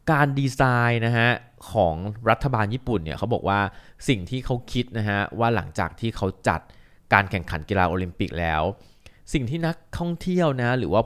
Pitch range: 90-130 Hz